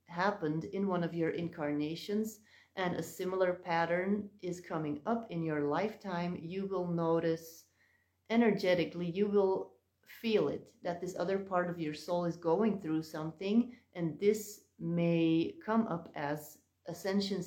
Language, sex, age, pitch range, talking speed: English, female, 30-49, 160-190 Hz, 145 wpm